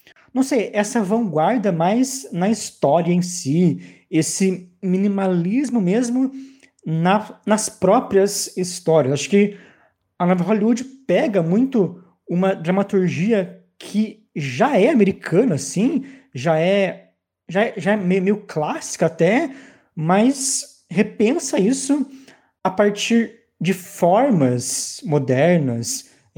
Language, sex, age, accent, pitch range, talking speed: Portuguese, male, 20-39, Brazilian, 155-225 Hz, 100 wpm